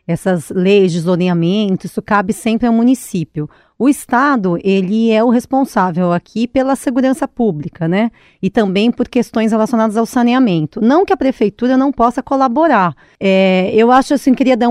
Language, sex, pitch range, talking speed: Portuguese, female, 185-235 Hz, 160 wpm